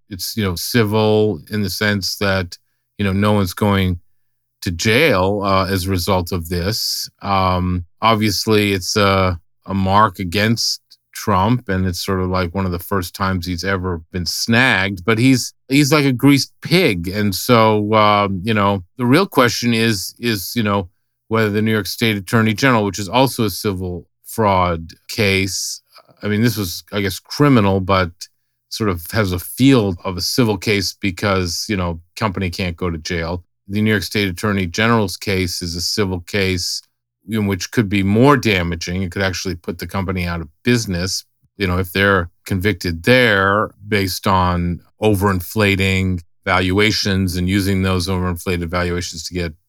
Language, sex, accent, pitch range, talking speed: English, male, American, 90-110 Hz, 175 wpm